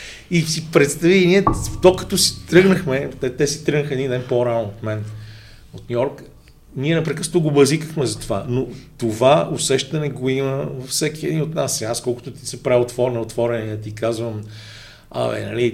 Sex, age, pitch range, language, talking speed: male, 40-59, 110-150 Hz, Bulgarian, 180 wpm